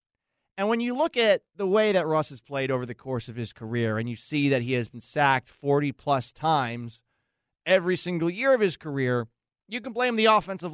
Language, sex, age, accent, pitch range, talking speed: English, male, 30-49, American, 130-195 Hz, 220 wpm